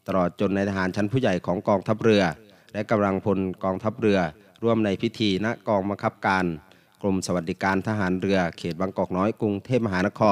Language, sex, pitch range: Thai, male, 95-110 Hz